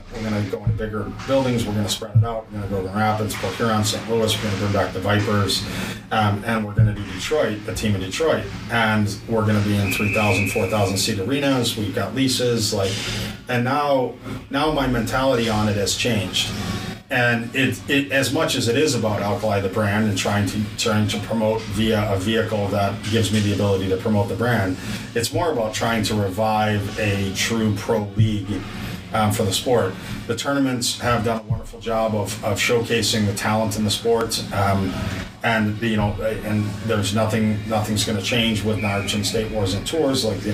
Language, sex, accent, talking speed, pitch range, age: English, male, American, 215 wpm, 105-115 Hz, 30-49